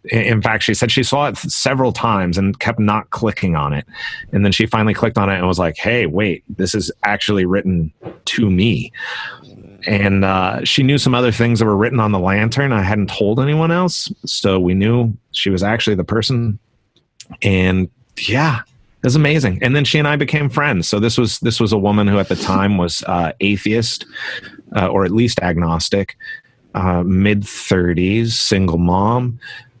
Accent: American